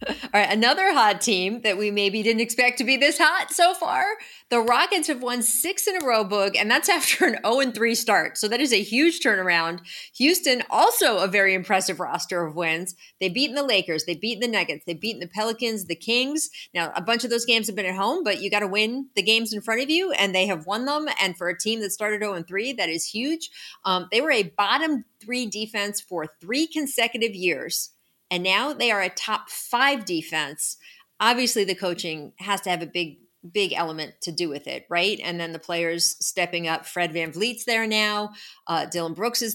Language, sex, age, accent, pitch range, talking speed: English, female, 30-49, American, 180-245 Hz, 210 wpm